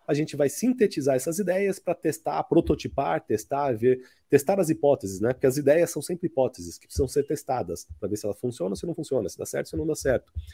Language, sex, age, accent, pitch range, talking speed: Portuguese, male, 40-59, Brazilian, 120-180 Hz, 240 wpm